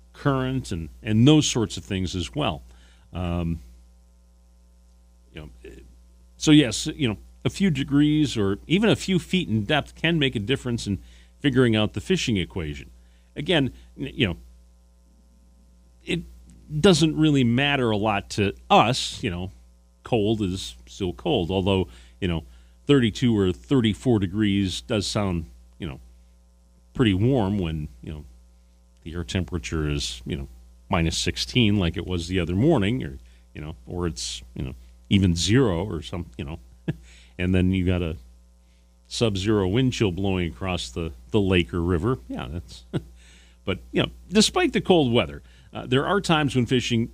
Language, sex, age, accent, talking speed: English, male, 40-59, American, 160 wpm